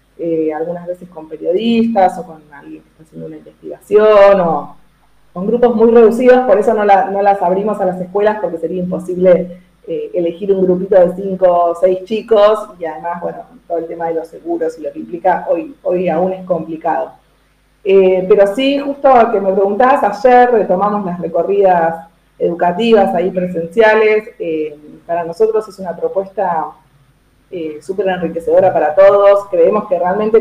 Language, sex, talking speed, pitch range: Spanish, female, 170 wpm, 165-205 Hz